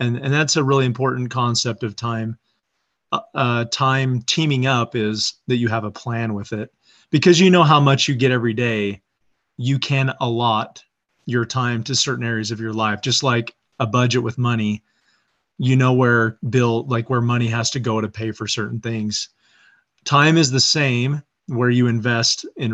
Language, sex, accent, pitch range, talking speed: English, male, American, 115-135 Hz, 185 wpm